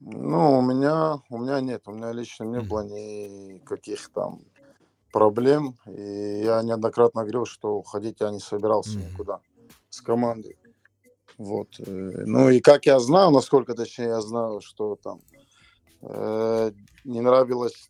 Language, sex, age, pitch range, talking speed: Russian, male, 20-39, 110-130 Hz, 135 wpm